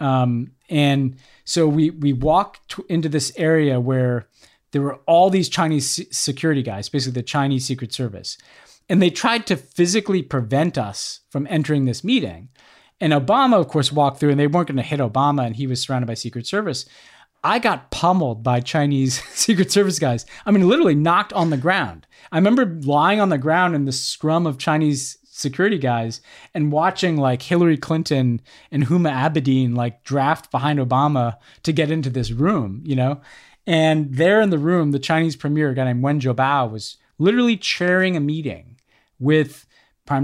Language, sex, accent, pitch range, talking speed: English, male, American, 130-160 Hz, 180 wpm